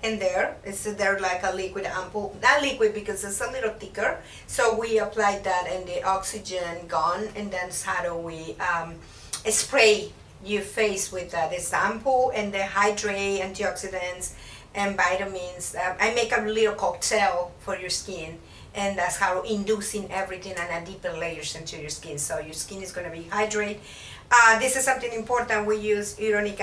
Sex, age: female, 50-69